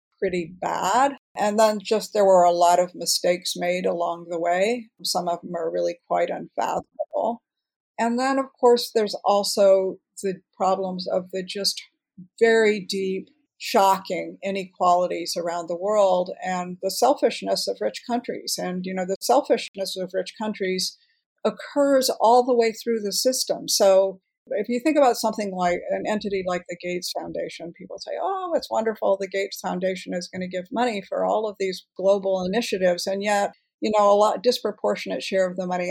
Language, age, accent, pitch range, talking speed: English, 50-69, American, 180-220 Hz, 175 wpm